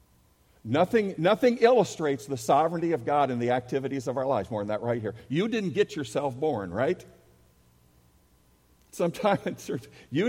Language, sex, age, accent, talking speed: English, male, 60-79, American, 150 wpm